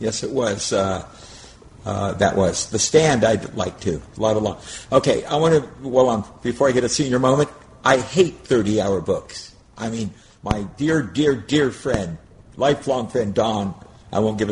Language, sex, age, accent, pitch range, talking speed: English, male, 50-69, American, 105-135 Hz, 180 wpm